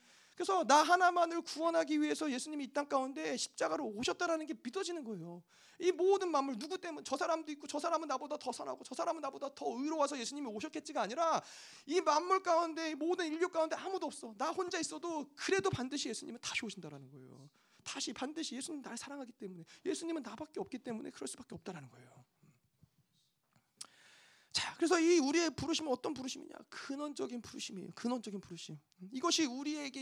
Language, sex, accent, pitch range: Korean, male, native, 210-320 Hz